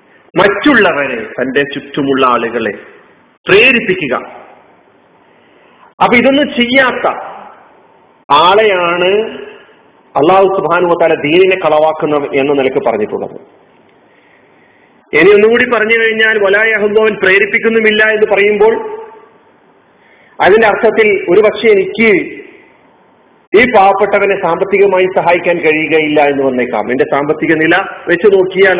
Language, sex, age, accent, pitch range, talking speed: Malayalam, male, 40-59, native, 160-225 Hz, 90 wpm